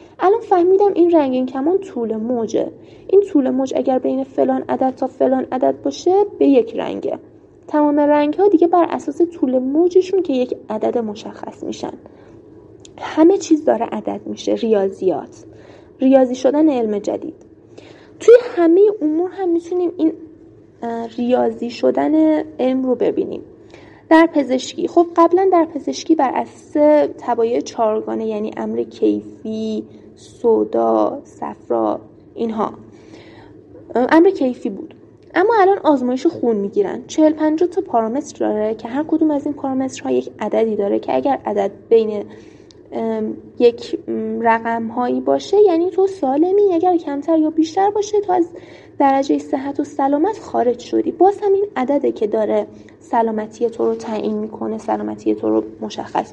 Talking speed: 140 wpm